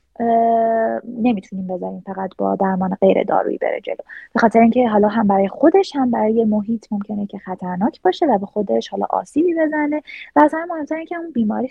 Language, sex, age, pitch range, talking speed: Persian, female, 20-39, 210-300 Hz, 180 wpm